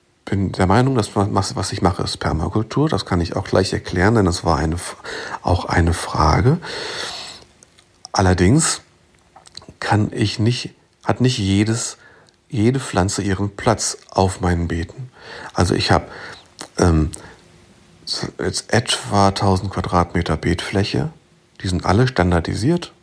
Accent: German